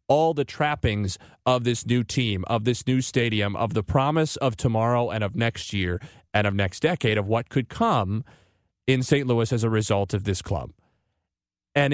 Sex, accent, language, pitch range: male, American, English, 110-140 Hz